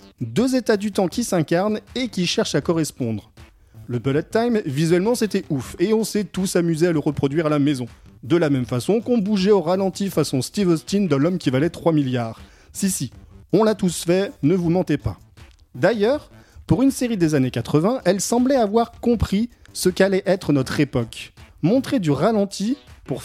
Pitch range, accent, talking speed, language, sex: 135-205 Hz, French, 195 wpm, French, male